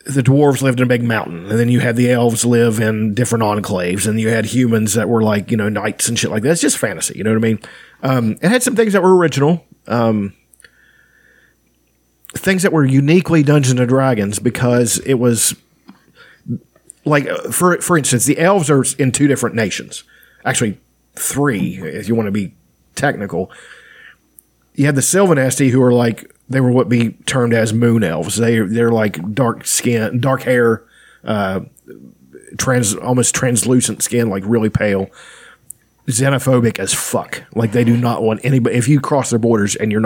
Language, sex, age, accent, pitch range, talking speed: English, male, 40-59, American, 110-135 Hz, 185 wpm